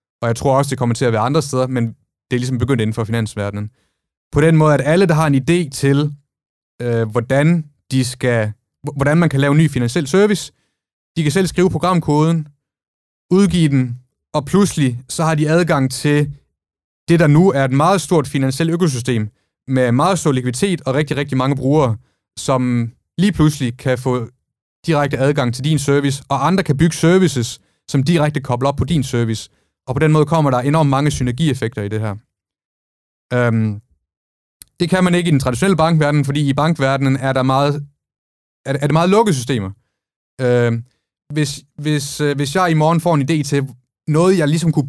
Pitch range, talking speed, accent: 125-155 Hz, 185 wpm, native